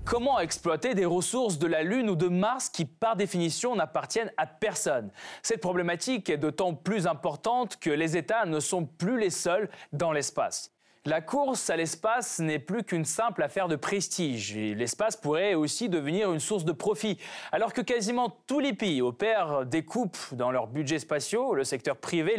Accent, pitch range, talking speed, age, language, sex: French, 150-210 Hz, 180 wpm, 20-39, French, male